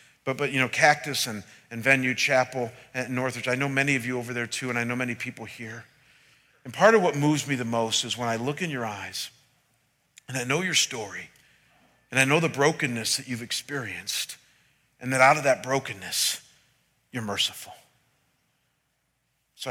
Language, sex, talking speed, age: English, male, 190 wpm, 40-59